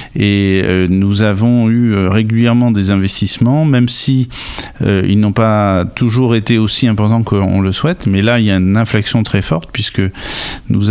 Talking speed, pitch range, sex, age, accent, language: 180 wpm, 95-115 Hz, male, 50-69, French, French